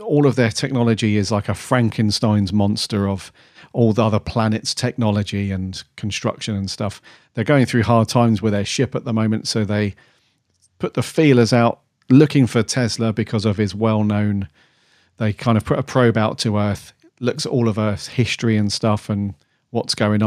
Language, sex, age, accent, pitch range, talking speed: English, male, 40-59, British, 105-120 Hz, 185 wpm